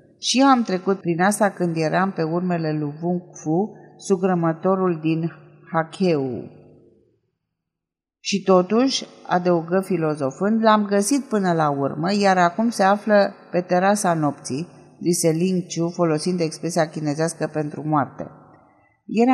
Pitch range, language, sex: 155-210 Hz, Romanian, female